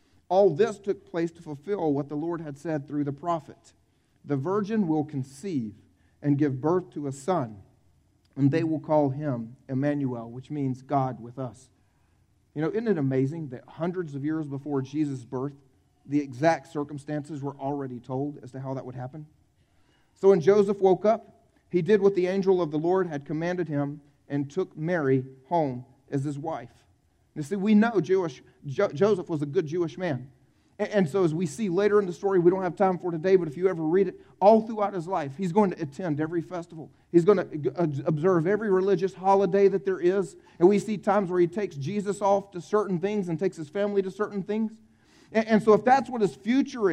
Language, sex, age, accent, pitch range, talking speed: English, male, 40-59, American, 145-200 Hz, 205 wpm